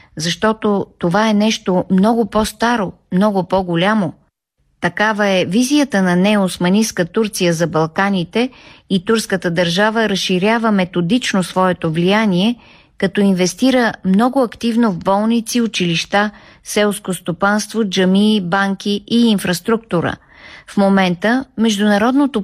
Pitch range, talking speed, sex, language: 180-220 Hz, 105 wpm, female, Bulgarian